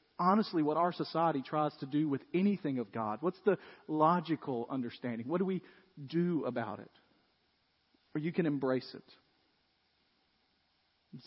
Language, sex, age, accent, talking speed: English, male, 40-59, American, 145 wpm